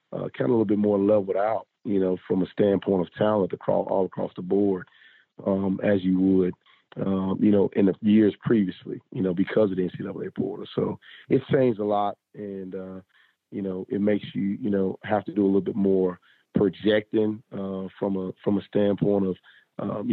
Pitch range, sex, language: 95-105 Hz, male, English